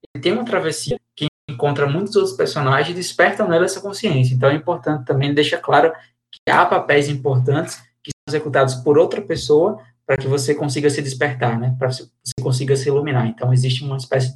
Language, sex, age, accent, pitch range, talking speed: Portuguese, male, 20-39, Brazilian, 125-150 Hz, 190 wpm